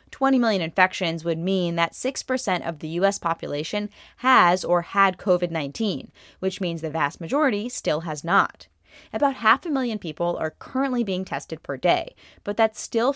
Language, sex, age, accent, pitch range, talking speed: English, female, 20-39, American, 165-215 Hz, 170 wpm